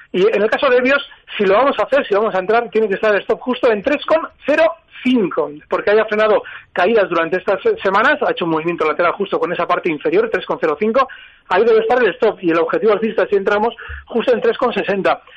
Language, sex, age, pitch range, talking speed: Spanish, male, 40-59, 190-285 Hz, 235 wpm